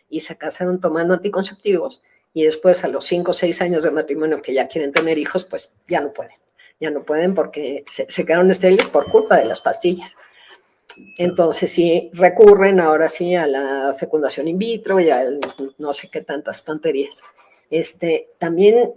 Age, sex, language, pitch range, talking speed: 50-69, female, Spanish, 165-205 Hz, 180 wpm